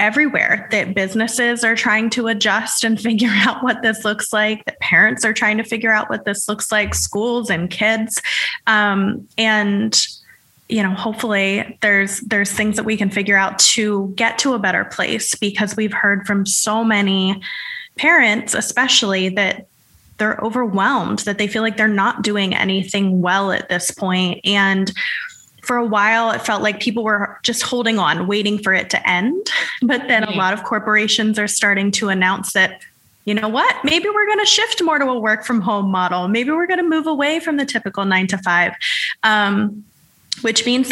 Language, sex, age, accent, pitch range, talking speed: English, female, 20-39, American, 195-230 Hz, 190 wpm